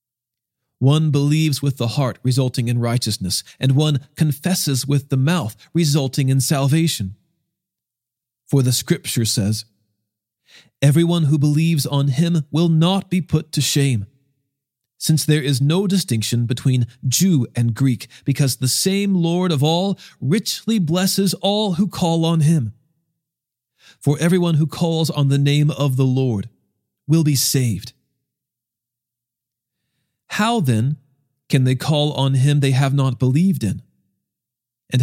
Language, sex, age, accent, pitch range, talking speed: English, male, 40-59, American, 120-165 Hz, 135 wpm